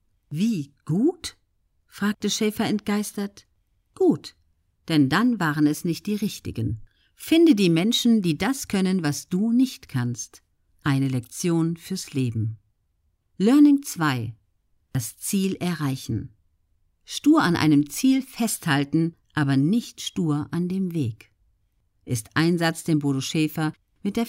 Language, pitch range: German, 130-190 Hz